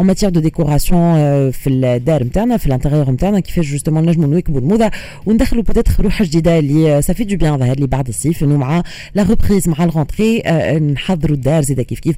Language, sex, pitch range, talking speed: Arabic, female, 145-195 Hz, 105 wpm